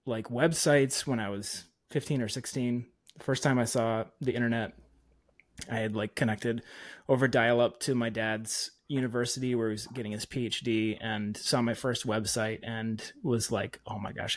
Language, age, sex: English, 30-49, male